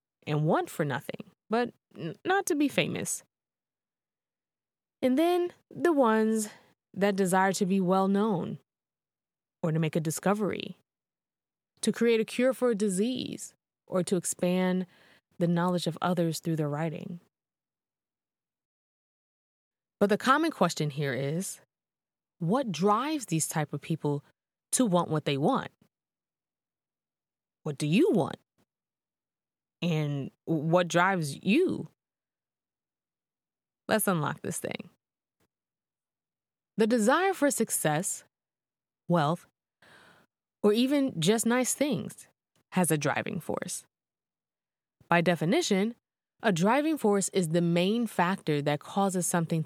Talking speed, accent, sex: 115 wpm, American, female